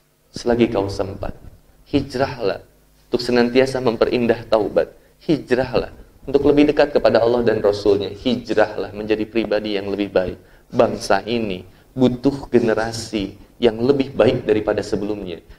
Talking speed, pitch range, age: 120 wpm, 105-130 Hz, 20-39